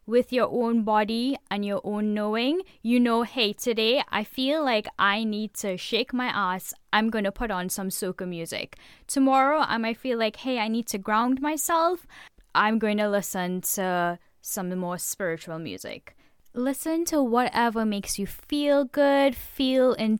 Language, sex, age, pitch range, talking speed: English, female, 10-29, 205-265 Hz, 170 wpm